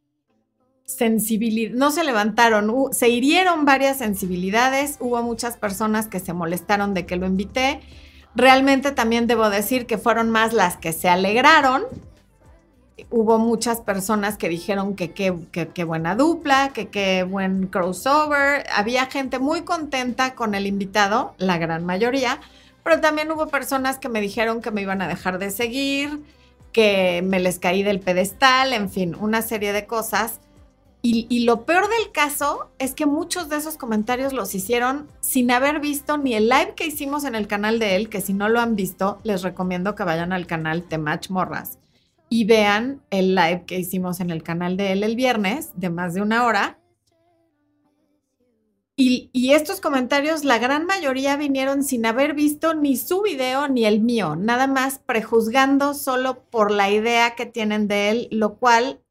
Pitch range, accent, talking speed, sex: 200-270 Hz, Mexican, 170 wpm, female